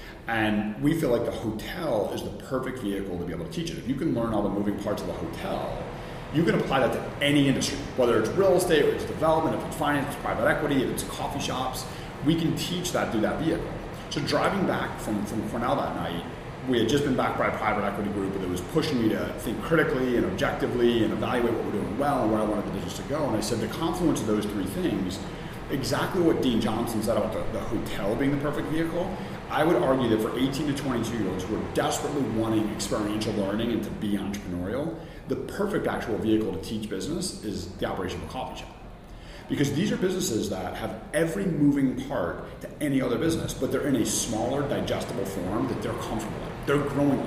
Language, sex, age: English, male, 30-49